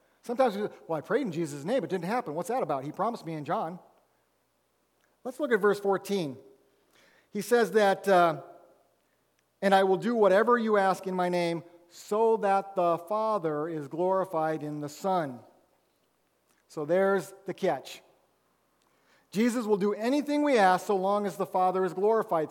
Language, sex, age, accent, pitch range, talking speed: English, male, 40-59, American, 170-215 Hz, 175 wpm